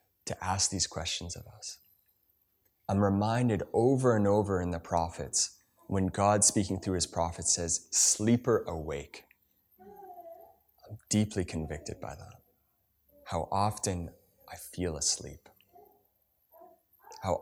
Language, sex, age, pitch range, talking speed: English, male, 20-39, 90-115 Hz, 115 wpm